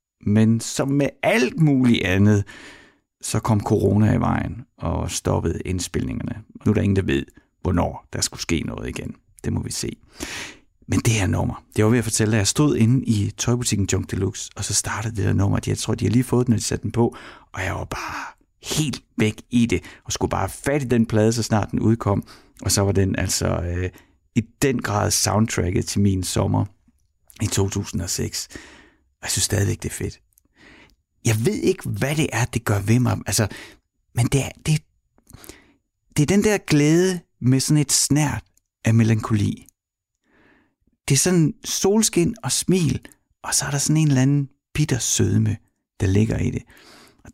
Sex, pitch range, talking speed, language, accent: male, 105-135 Hz, 195 wpm, Danish, native